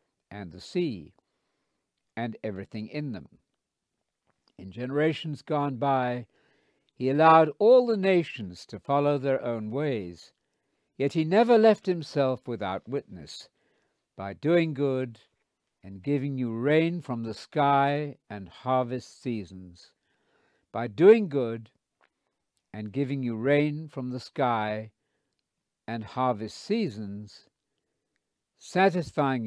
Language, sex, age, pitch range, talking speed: English, male, 60-79, 110-155 Hz, 110 wpm